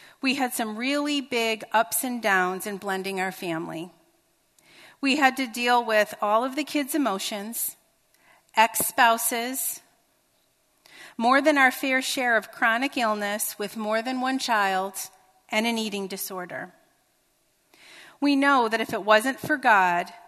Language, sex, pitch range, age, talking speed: English, female, 215-285 Hz, 40-59, 140 wpm